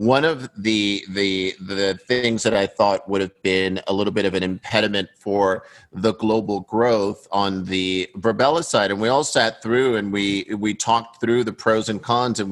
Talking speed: 195 wpm